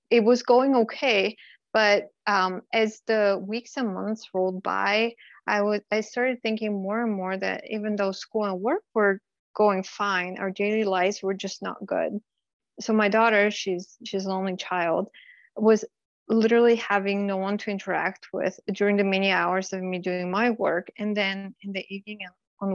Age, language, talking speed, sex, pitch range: 20-39, English, 180 wpm, female, 190-220 Hz